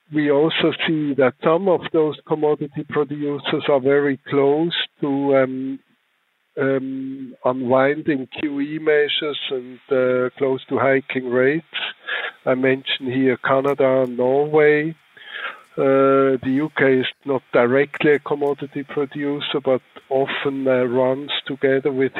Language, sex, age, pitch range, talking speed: English, male, 60-79, 130-145 Hz, 120 wpm